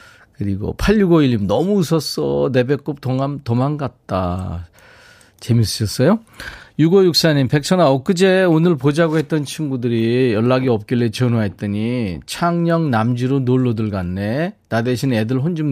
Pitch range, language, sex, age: 110-155 Hz, Korean, male, 40-59